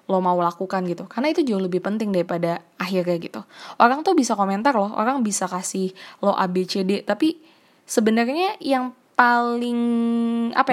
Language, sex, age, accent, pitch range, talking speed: Indonesian, female, 10-29, native, 190-240 Hz, 170 wpm